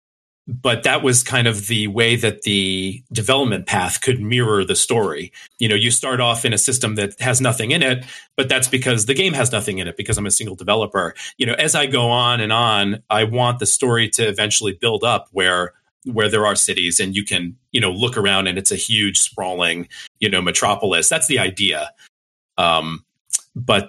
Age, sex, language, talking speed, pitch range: 40-59, male, English, 210 wpm, 95-130 Hz